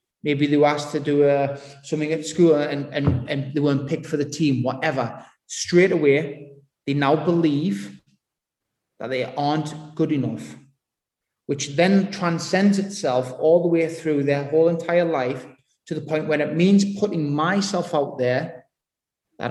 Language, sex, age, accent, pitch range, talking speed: English, male, 30-49, British, 125-160 Hz, 165 wpm